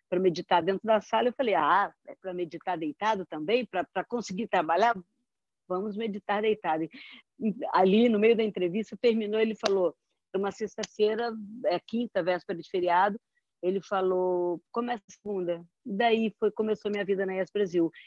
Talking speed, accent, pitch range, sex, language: 165 wpm, Brazilian, 175-220 Hz, female, Portuguese